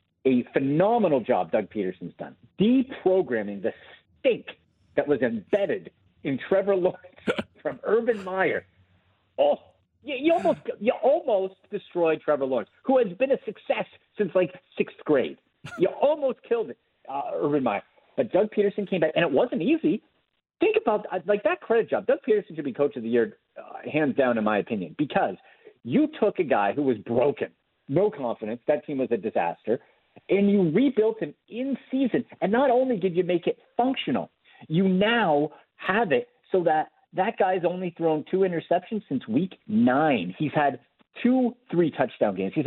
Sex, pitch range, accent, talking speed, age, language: male, 150-235 Hz, American, 175 wpm, 50-69, English